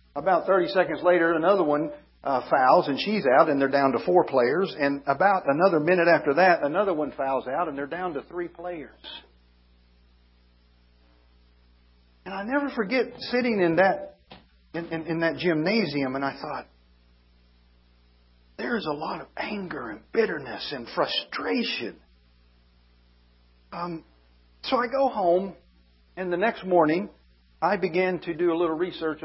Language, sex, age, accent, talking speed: English, male, 50-69, American, 150 wpm